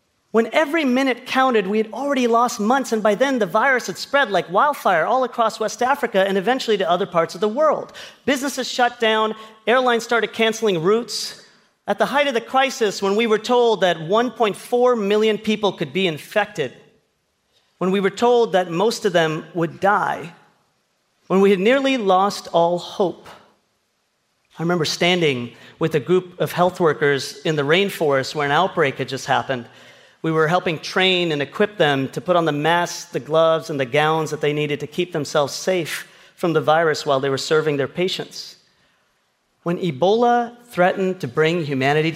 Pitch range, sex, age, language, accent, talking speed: 155-220 Hz, male, 40-59, English, American, 180 wpm